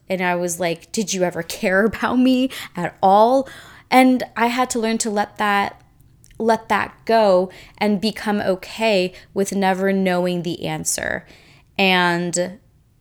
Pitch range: 175-210 Hz